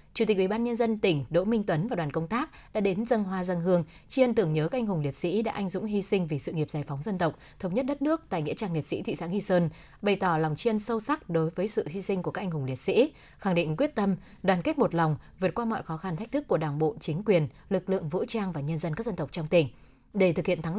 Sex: female